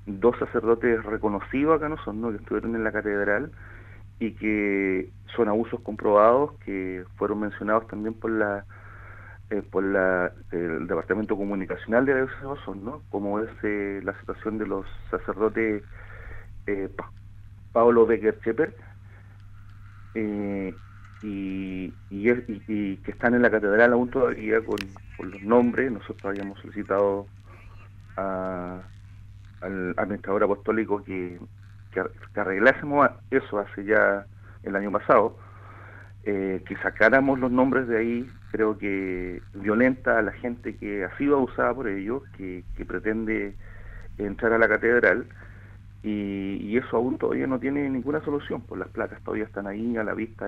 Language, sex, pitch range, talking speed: Spanish, male, 100-110 Hz, 145 wpm